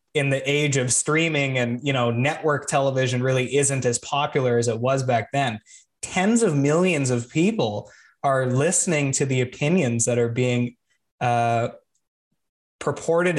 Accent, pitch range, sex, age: American, 135-180 Hz, male, 20-39